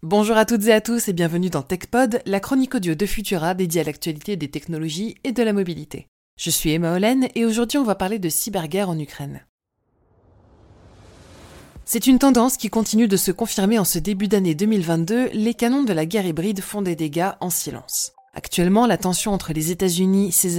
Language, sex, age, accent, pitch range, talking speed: French, female, 20-39, French, 160-200 Hz, 200 wpm